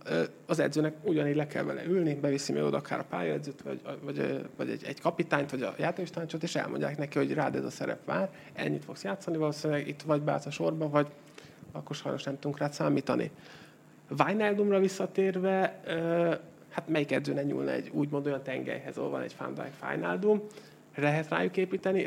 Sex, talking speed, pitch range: male, 175 wpm, 140-170 Hz